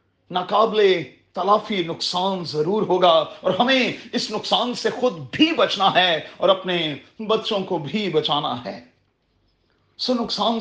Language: Urdu